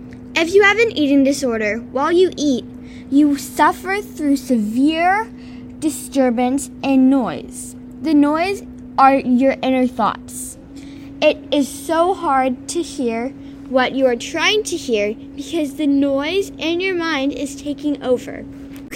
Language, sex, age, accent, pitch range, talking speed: English, female, 10-29, American, 255-310 Hz, 140 wpm